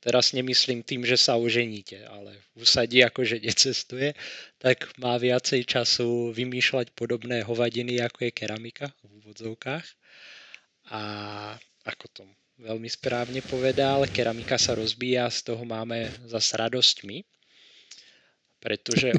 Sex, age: male, 20-39